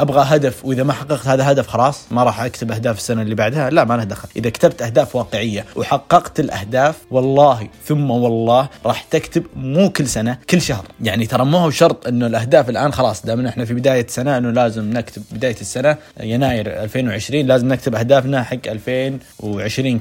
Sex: male